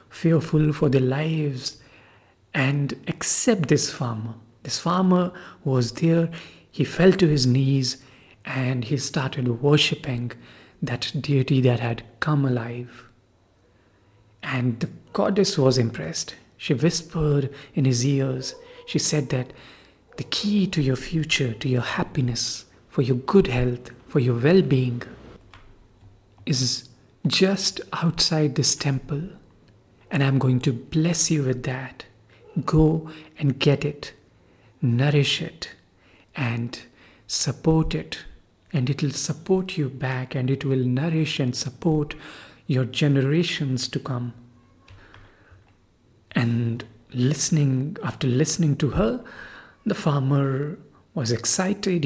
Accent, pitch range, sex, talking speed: Indian, 120-155 Hz, male, 120 wpm